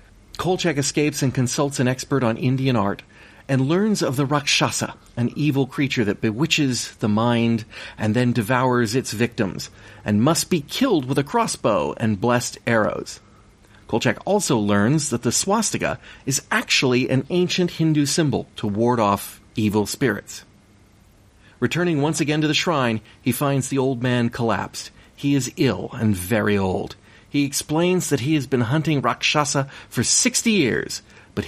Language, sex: English, male